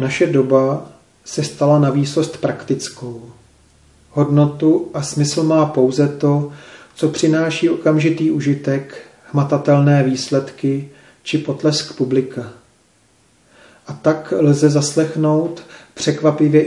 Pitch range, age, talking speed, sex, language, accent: 140-155 Hz, 40-59, 95 wpm, male, Czech, native